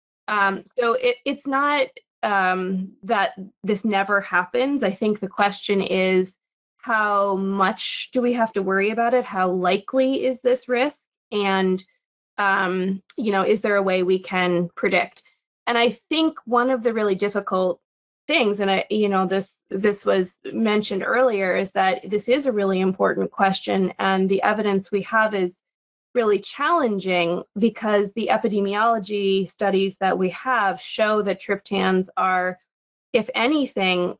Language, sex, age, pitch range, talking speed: English, female, 20-39, 185-220 Hz, 155 wpm